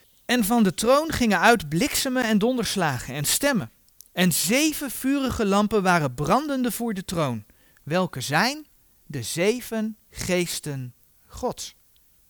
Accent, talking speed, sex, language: Dutch, 125 wpm, male, Dutch